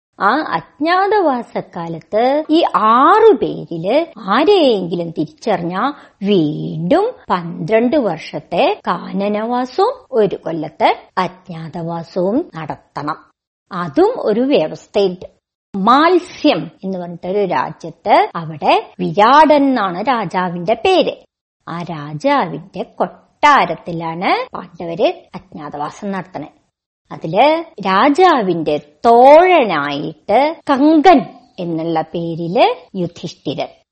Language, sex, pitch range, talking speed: Malayalam, male, 180-300 Hz, 70 wpm